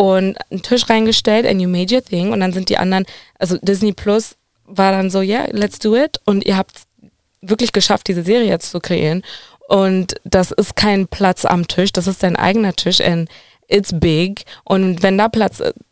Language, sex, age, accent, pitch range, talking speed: German, female, 20-39, German, 175-220 Hz, 205 wpm